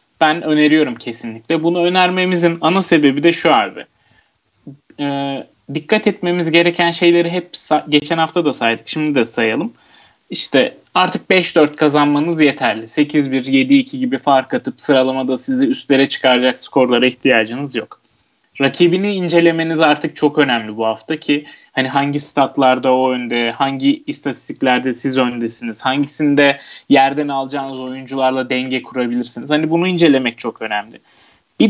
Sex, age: male, 20-39